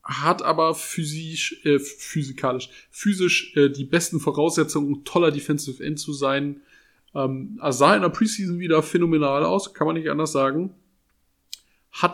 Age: 20-39